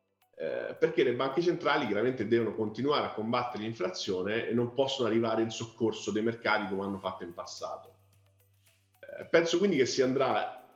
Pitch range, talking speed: 105-155 Hz, 165 wpm